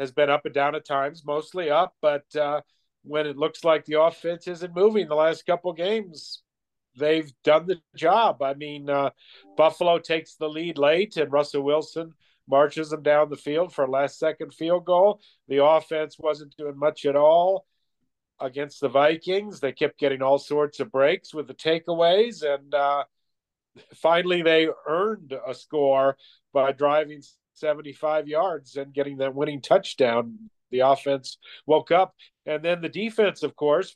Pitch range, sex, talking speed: 135-155 Hz, male, 165 wpm